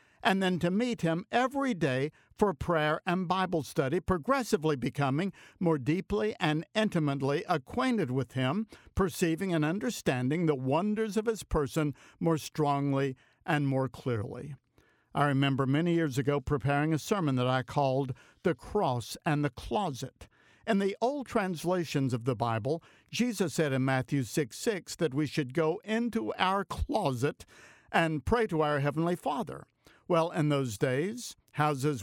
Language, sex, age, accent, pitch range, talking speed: English, male, 60-79, American, 140-185 Hz, 150 wpm